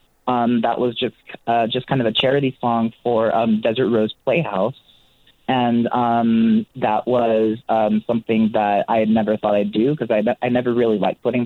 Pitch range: 105-130 Hz